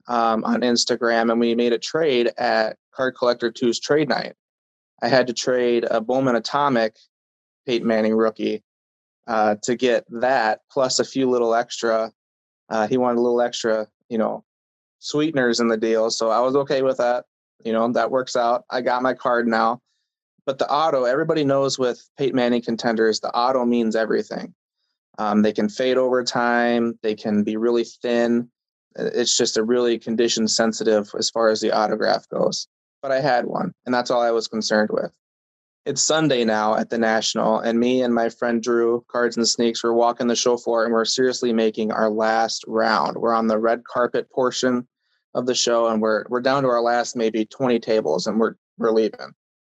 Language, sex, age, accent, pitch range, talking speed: English, male, 20-39, American, 110-125 Hz, 190 wpm